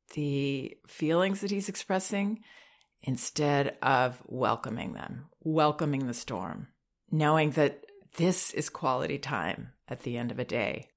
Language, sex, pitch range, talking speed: English, female, 135-175 Hz, 130 wpm